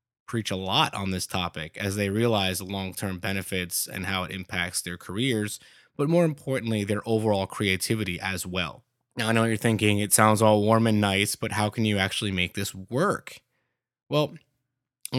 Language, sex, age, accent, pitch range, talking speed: English, male, 20-39, American, 95-125 Hz, 190 wpm